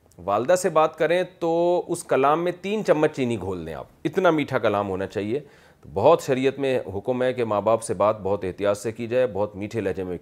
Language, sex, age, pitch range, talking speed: Urdu, male, 40-59, 110-160 Hz, 225 wpm